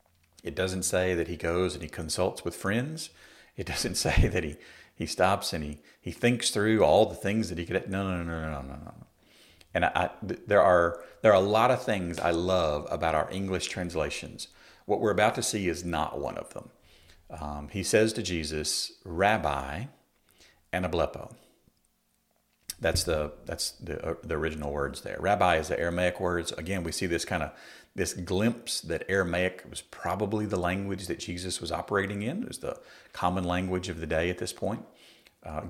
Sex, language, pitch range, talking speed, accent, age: male, English, 80-95 Hz, 195 wpm, American, 50-69